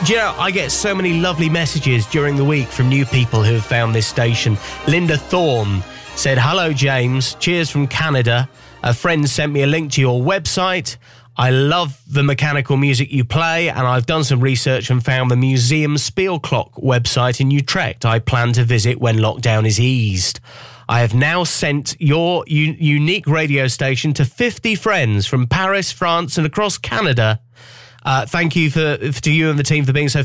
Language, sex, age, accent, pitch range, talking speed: English, male, 30-49, British, 120-160 Hz, 190 wpm